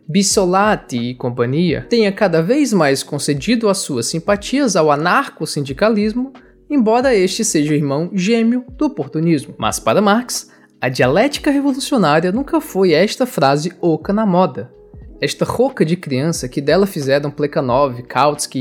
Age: 20-39